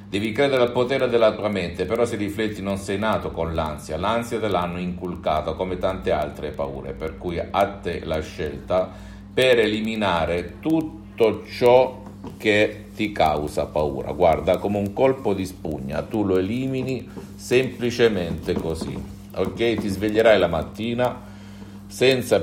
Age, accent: 50-69, native